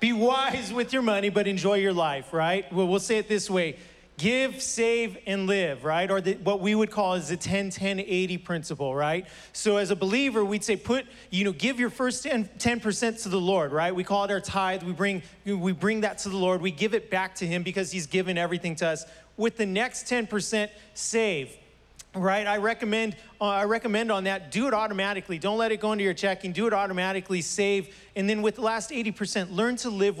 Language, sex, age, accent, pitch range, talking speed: English, male, 30-49, American, 180-220 Hz, 220 wpm